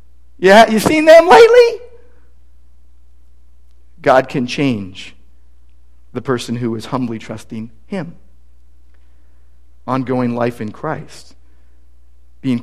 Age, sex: 50-69, male